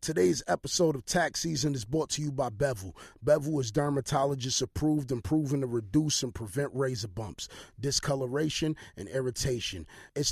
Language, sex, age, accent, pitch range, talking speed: English, male, 30-49, American, 130-155 Hz, 150 wpm